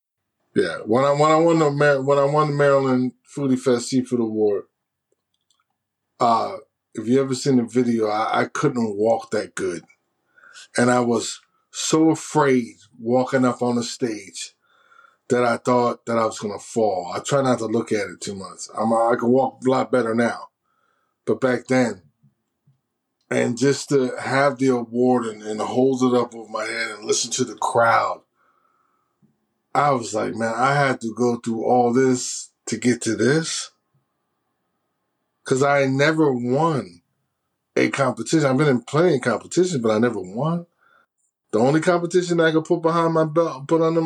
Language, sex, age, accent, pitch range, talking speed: English, male, 20-39, American, 120-150 Hz, 175 wpm